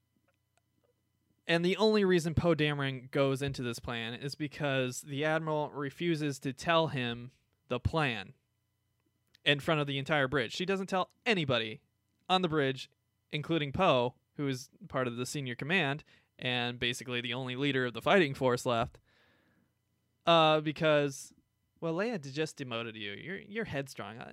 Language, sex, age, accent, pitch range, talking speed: English, male, 20-39, American, 125-155 Hz, 155 wpm